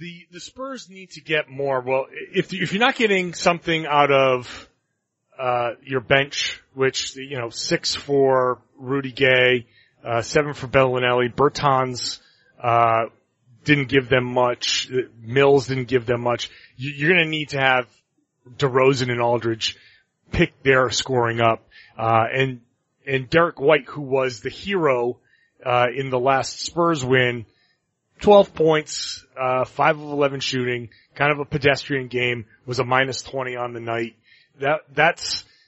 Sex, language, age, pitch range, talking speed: male, English, 30-49, 125-150 Hz, 155 wpm